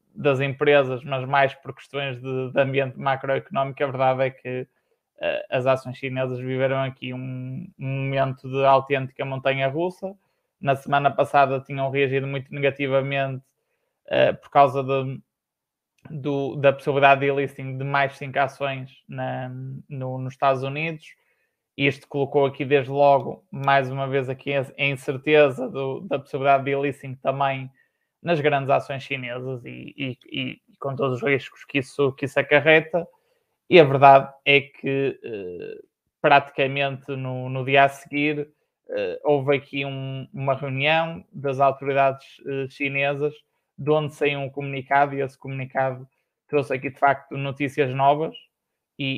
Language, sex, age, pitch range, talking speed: Portuguese, male, 20-39, 135-145 Hz, 135 wpm